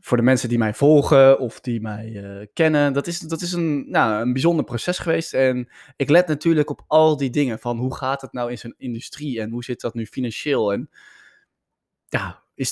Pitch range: 115-145 Hz